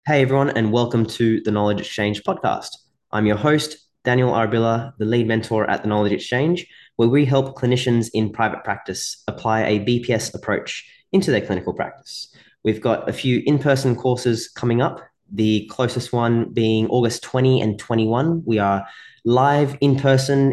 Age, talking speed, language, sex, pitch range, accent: 20-39, 165 wpm, English, male, 110-130 Hz, Australian